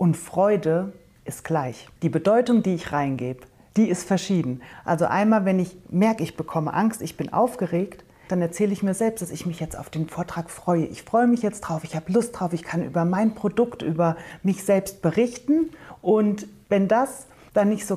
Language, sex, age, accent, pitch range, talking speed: German, female, 40-59, German, 165-200 Hz, 200 wpm